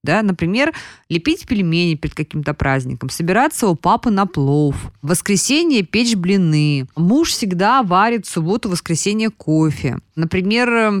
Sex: female